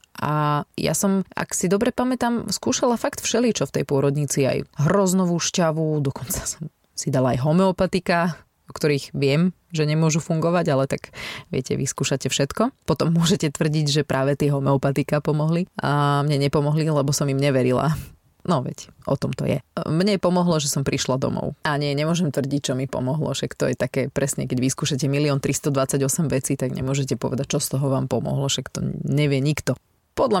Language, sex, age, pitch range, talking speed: Slovak, female, 20-39, 140-165 Hz, 180 wpm